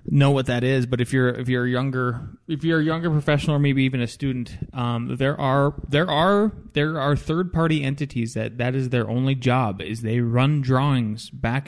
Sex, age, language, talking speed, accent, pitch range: male, 20-39, English, 210 wpm, American, 120-145 Hz